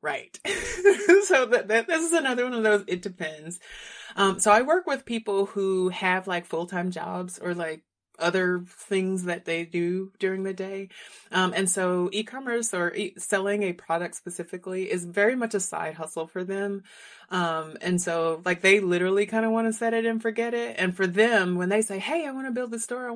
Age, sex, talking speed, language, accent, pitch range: 30-49, female, 205 wpm, English, American, 165-205 Hz